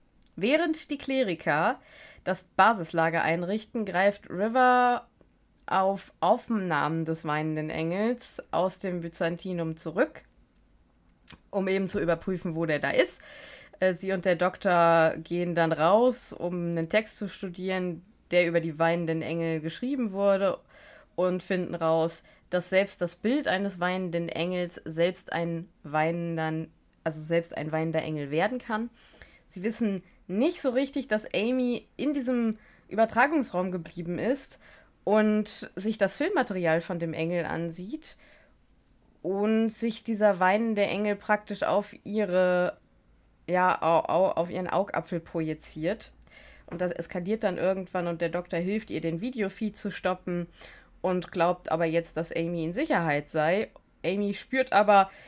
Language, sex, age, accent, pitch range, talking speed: German, female, 20-39, German, 165-215 Hz, 130 wpm